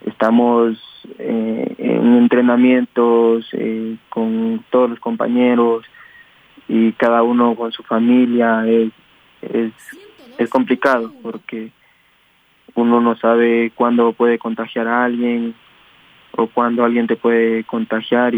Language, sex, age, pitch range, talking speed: Spanish, male, 20-39, 115-120 Hz, 110 wpm